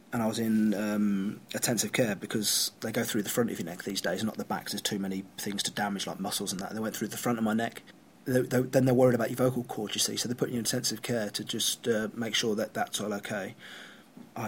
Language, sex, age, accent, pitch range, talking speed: English, male, 30-49, British, 110-130 Hz, 285 wpm